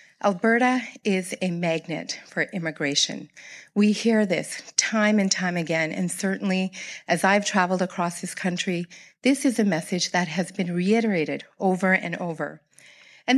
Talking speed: 150 wpm